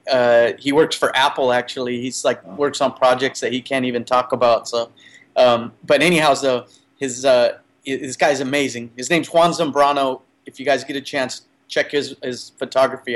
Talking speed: 185 wpm